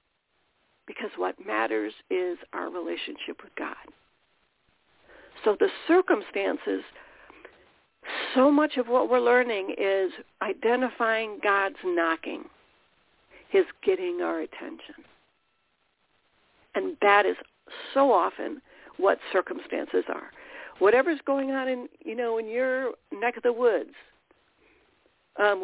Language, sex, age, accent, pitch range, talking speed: English, female, 60-79, American, 210-350 Hz, 110 wpm